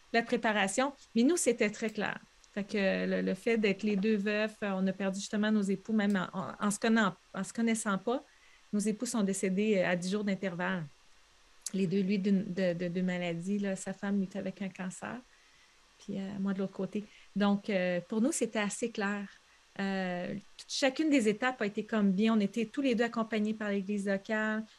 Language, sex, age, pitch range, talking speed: French, female, 30-49, 195-230 Hz, 210 wpm